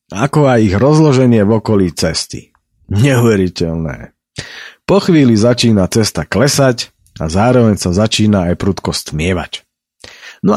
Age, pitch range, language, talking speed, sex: 40-59, 90-120 Hz, Slovak, 120 wpm, male